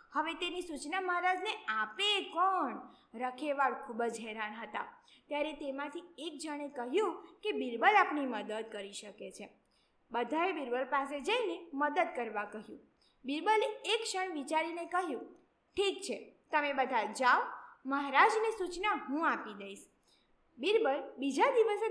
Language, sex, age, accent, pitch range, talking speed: Gujarati, female, 20-39, native, 270-410 Hz, 130 wpm